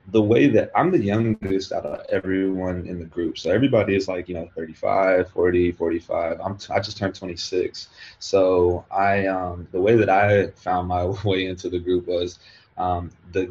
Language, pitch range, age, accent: English, 90-100 Hz, 20-39, American